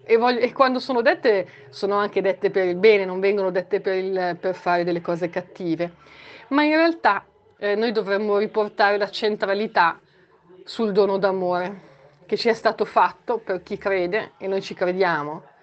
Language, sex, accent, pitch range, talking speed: Italian, female, native, 185-220 Hz, 170 wpm